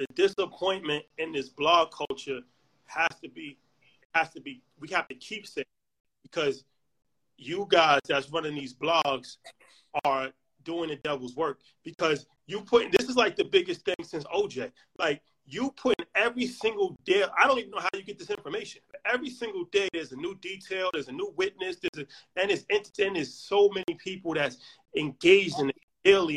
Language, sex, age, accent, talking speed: English, male, 30-49, American, 190 wpm